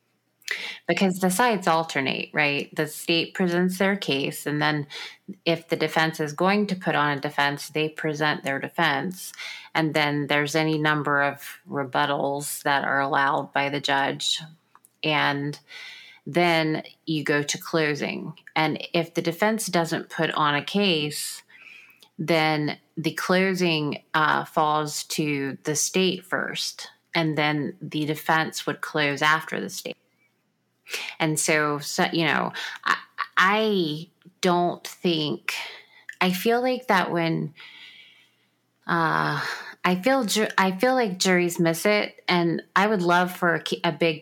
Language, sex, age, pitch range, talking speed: English, female, 30-49, 150-175 Hz, 140 wpm